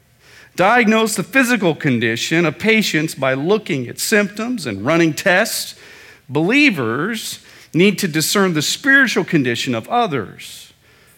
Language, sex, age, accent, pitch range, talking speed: English, male, 40-59, American, 130-215 Hz, 120 wpm